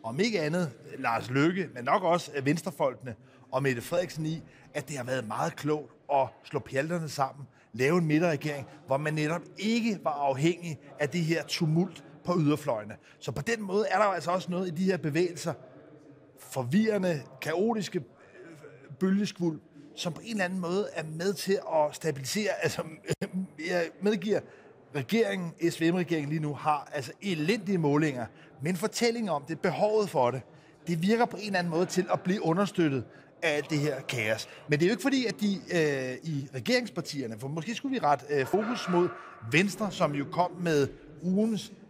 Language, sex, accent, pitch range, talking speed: Danish, male, native, 140-185 Hz, 180 wpm